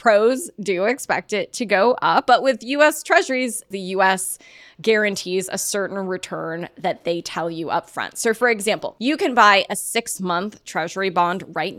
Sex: female